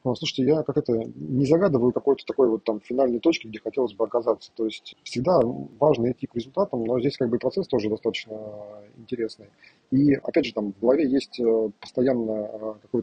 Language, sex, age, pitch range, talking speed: Russian, male, 20-39, 105-125 Hz, 180 wpm